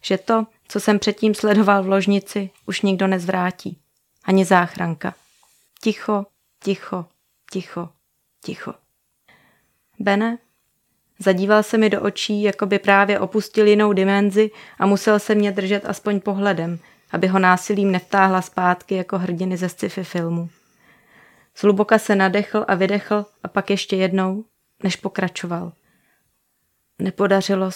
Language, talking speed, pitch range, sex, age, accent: Czech, 125 wpm, 185-205 Hz, female, 30-49, native